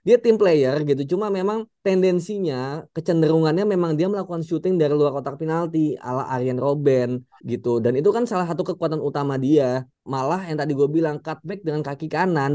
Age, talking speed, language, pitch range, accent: 20-39, 180 wpm, Indonesian, 130-175 Hz, native